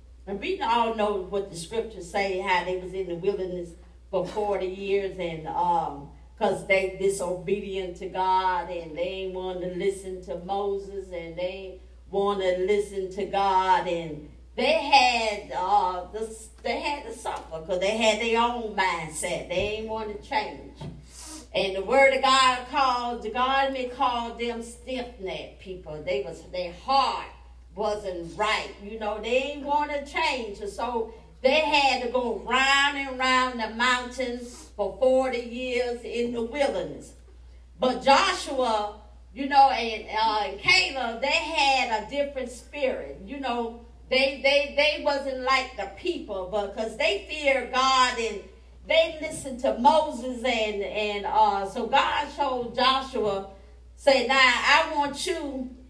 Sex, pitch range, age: female, 195-265 Hz, 50-69